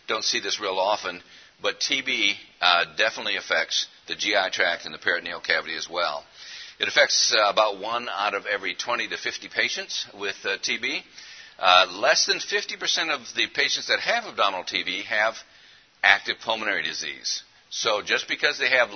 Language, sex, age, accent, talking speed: English, male, 50-69, American, 170 wpm